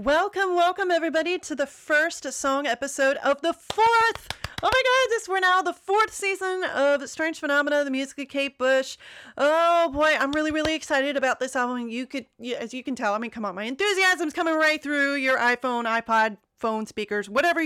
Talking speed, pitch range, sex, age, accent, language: 195 wpm, 230-310 Hz, female, 30-49, American, English